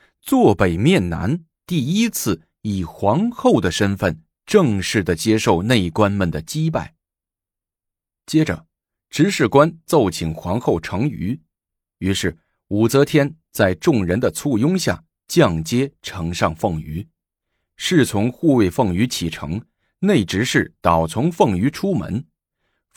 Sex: male